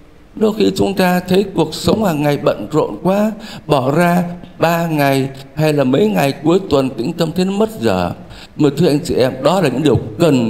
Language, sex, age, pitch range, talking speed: Vietnamese, male, 60-79, 115-185 Hz, 210 wpm